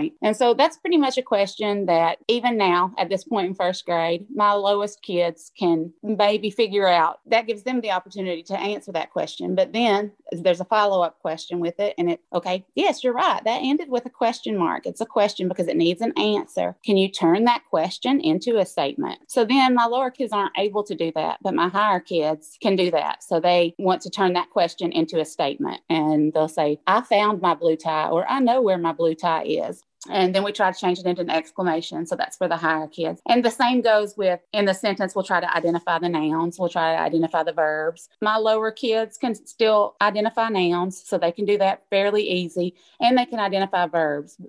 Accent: American